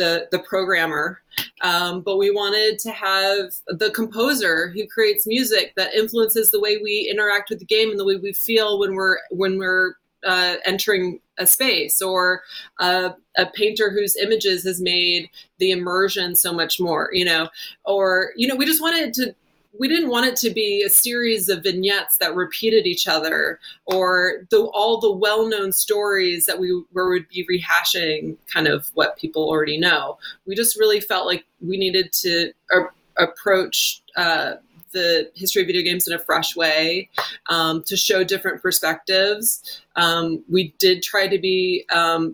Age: 20-39